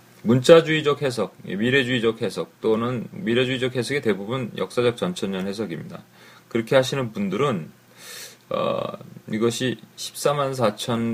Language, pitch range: Korean, 110-140 Hz